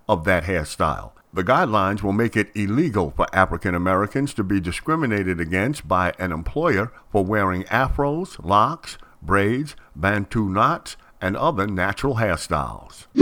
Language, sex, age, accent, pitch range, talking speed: English, male, 50-69, American, 95-130 Hz, 135 wpm